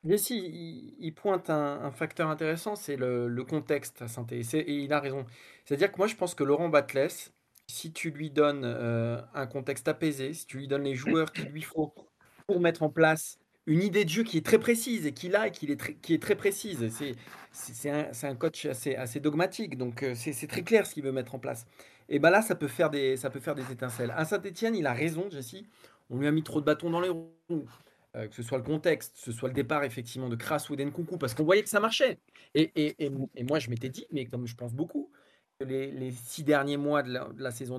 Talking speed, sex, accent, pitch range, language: 250 wpm, male, French, 130-170 Hz, French